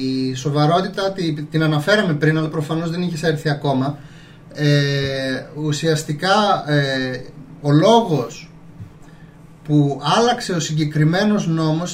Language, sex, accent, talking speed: Greek, male, native, 105 wpm